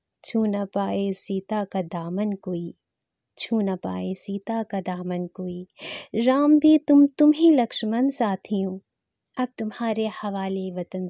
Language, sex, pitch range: Hindi, female, 185-225 Hz